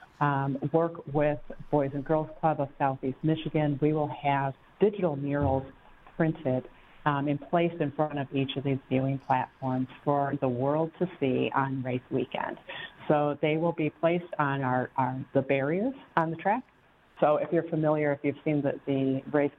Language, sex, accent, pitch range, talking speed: English, female, American, 135-155 Hz, 180 wpm